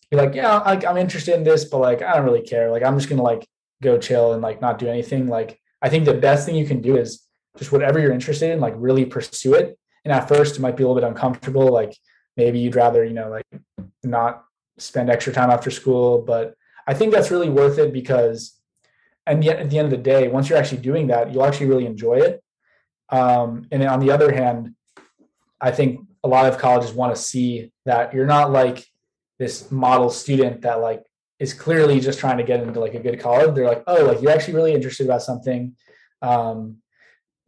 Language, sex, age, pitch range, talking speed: English, male, 20-39, 120-145 Hz, 220 wpm